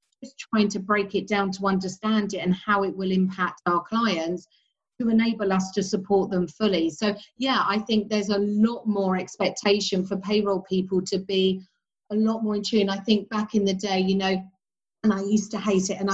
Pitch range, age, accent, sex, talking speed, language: 185-210 Hz, 40-59, British, female, 210 wpm, English